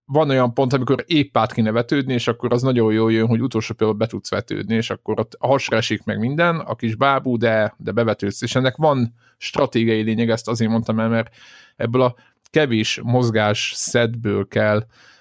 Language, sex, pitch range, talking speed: Hungarian, male, 105-125 Hz, 195 wpm